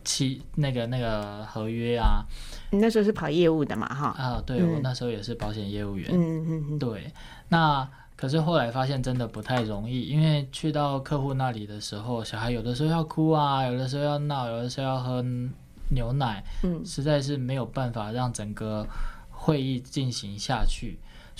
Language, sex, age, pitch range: Chinese, male, 20-39, 115-145 Hz